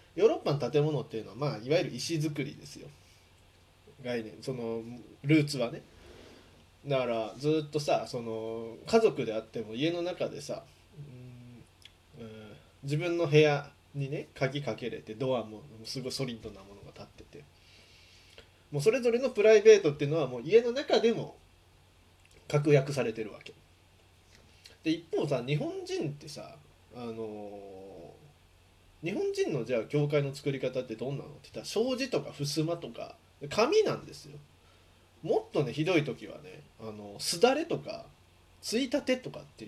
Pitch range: 100-165 Hz